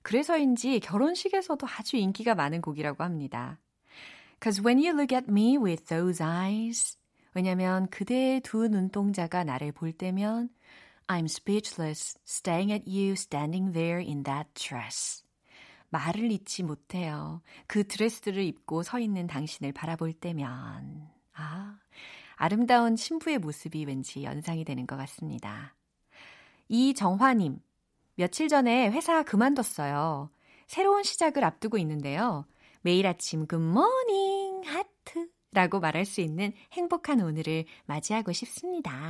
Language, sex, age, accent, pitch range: Korean, female, 40-59, native, 160-240 Hz